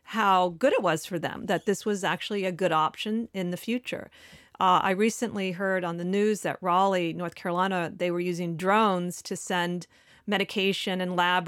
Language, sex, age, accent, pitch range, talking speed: English, female, 40-59, American, 175-205 Hz, 190 wpm